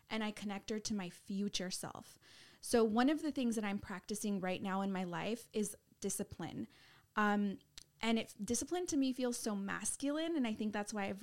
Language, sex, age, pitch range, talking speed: English, female, 20-39, 195-245 Hz, 205 wpm